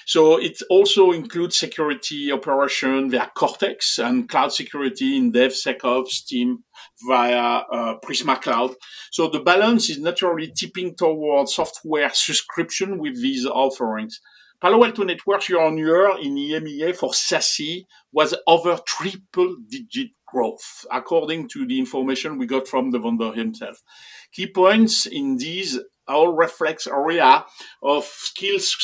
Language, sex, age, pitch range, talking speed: English, male, 50-69, 150-220 Hz, 125 wpm